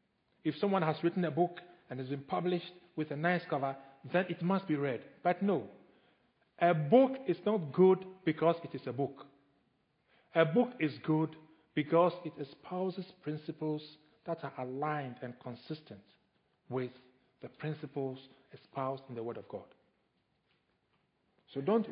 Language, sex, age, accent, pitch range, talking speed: English, male, 50-69, Nigerian, 140-185 Hz, 150 wpm